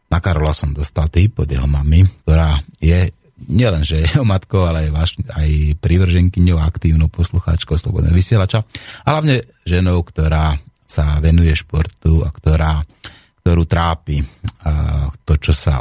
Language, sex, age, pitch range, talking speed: Slovak, male, 30-49, 75-95 Hz, 135 wpm